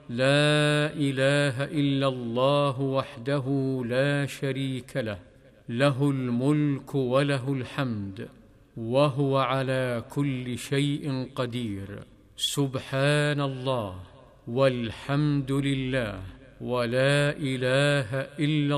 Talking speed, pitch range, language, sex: 75 wpm, 125-145 Hz, Arabic, male